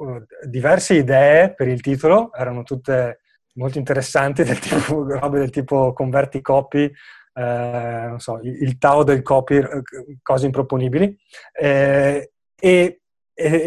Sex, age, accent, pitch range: male, 30-49, native, 130-150 Hz